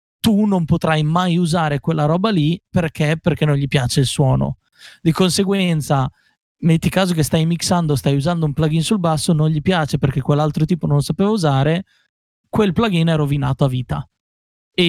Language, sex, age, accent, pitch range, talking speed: Italian, male, 30-49, native, 150-185 Hz, 180 wpm